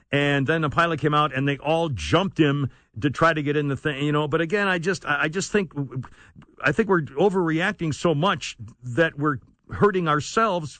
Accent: American